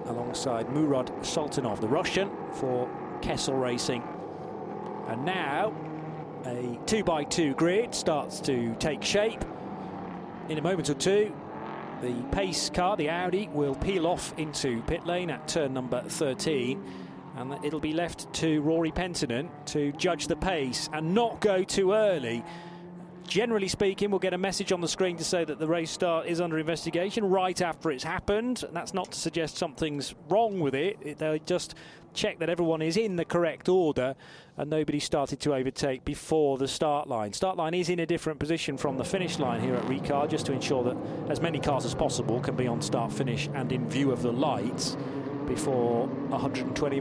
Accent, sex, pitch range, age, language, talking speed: British, male, 145-185 Hz, 40-59, English, 175 wpm